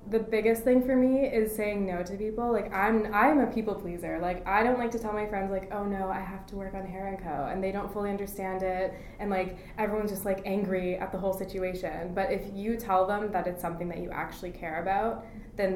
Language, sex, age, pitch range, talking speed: English, female, 20-39, 185-215 Hz, 250 wpm